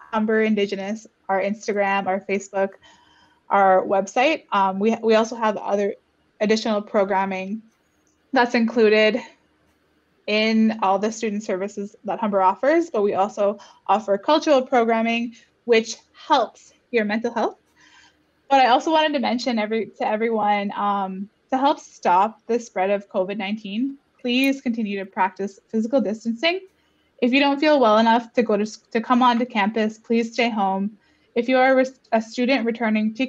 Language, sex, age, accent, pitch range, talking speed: English, female, 20-39, American, 200-245 Hz, 150 wpm